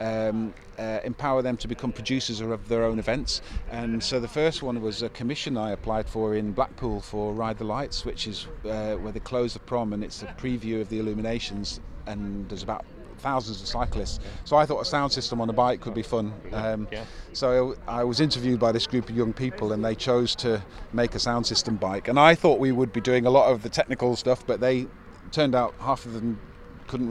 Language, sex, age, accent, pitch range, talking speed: English, male, 40-59, British, 110-125 Hz, 225 wpm